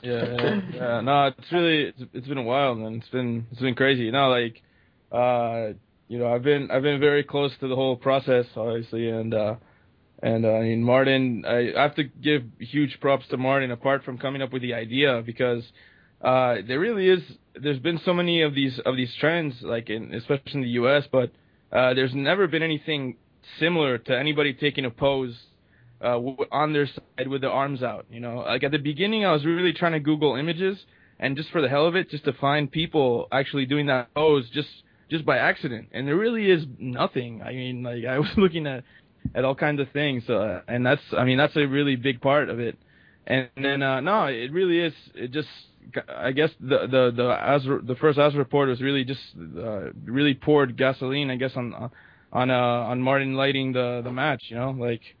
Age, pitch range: 20-39, 120-145 Hz